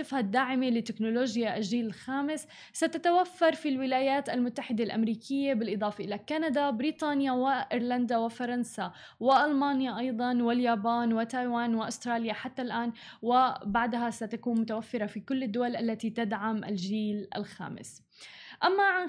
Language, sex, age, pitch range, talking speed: Arabic, female, 10-29, 230-280 Hz, 110 wpm